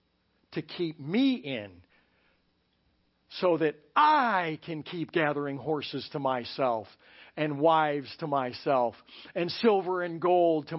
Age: 60-79